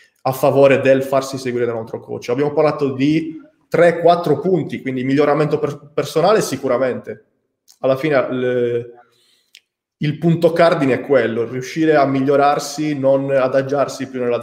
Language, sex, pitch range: Italian, male, 130-155 Hz